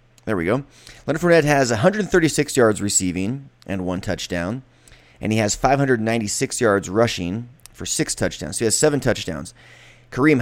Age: 30-49